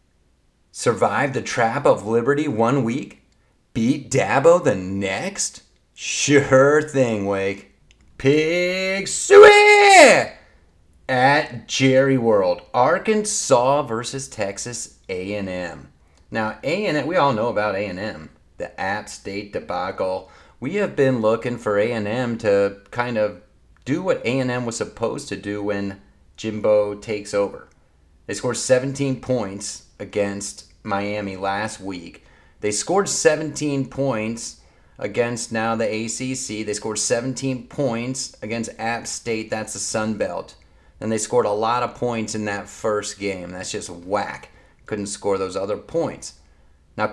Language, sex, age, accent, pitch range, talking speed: English, male, 30-49, American, 100-130 Hz, 130 wpm